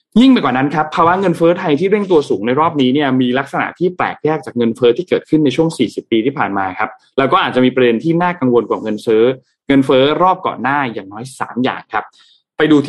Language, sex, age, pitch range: Thai, male, 20-39, 125-185 Hz